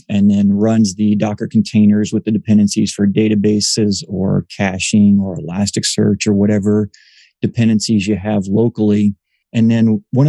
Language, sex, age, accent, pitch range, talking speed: English, male, 30-49, American, 105-115 Hz, 140 wpm